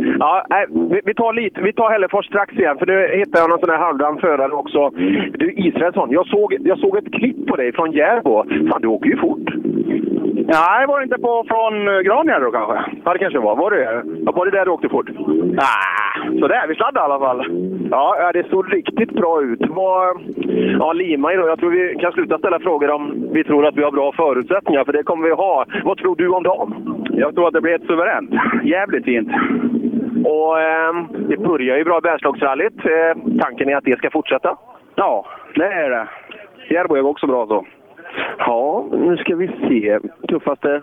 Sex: male